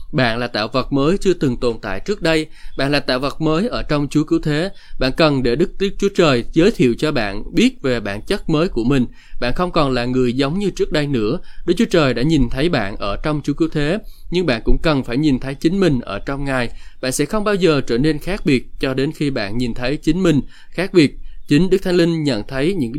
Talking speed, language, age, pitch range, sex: 260 wpm, Vietnamese, 20-39, 115-155 Hz, male